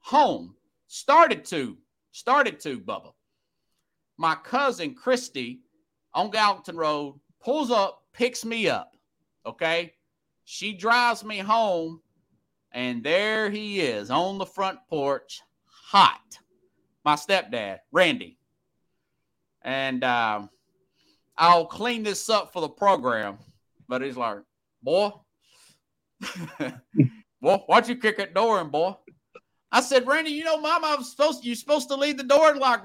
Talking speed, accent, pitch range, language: 130 wpm, American, 165-245 Hz, English